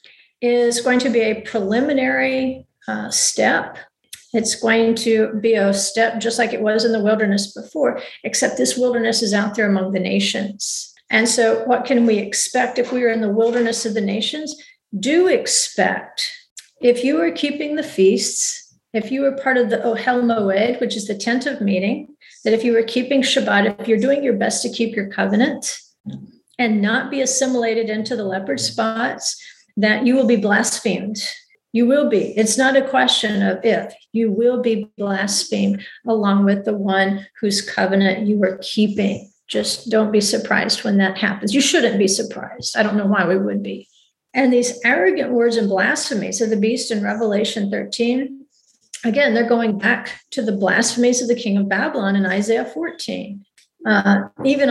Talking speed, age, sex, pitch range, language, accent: 180 wpm, 50-69, female, 210-255 Hz, English, American